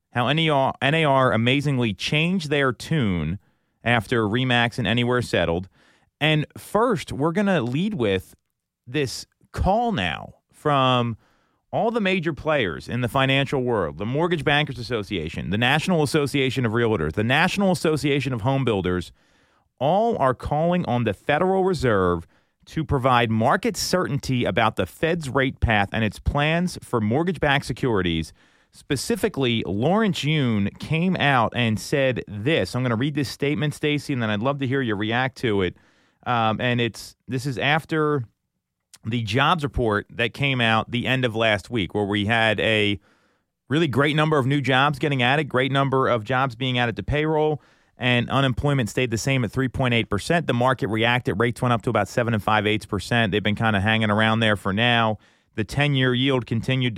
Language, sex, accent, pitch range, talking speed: English, male, American, 110-145 Hz, 165 wpm